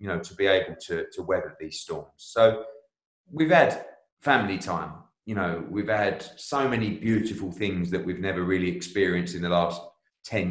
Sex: male